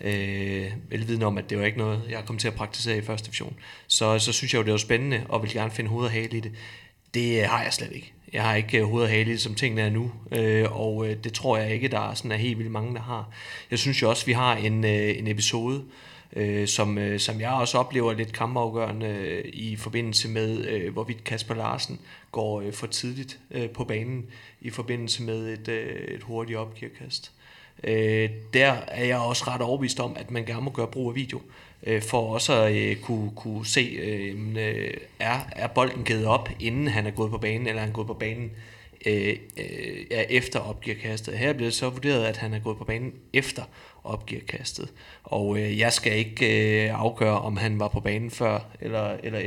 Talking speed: 200 wpm